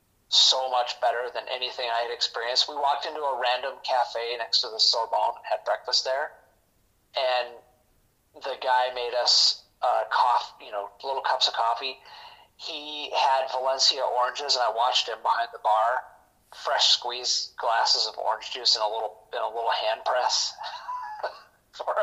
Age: 40-59